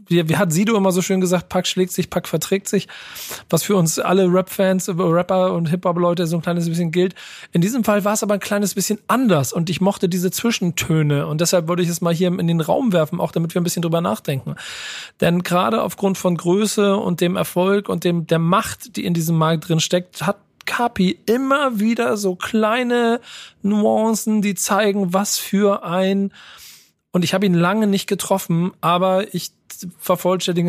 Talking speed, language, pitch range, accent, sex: 195 wpm, German, 170-200 Hz, German, male